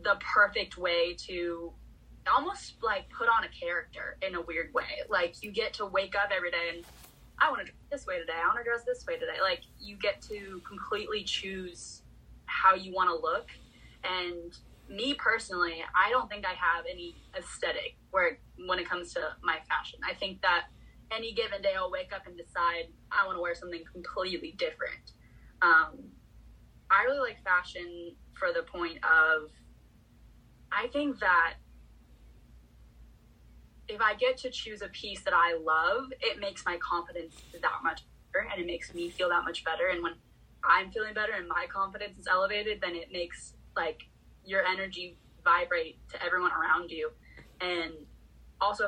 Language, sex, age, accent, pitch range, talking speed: English, female, 20-39, American, 170-255 Hz, 175 wpm